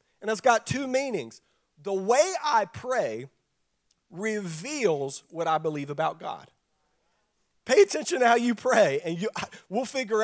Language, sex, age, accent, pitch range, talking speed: English, male, 40-59, American, 205-310 Hz, 145 wpm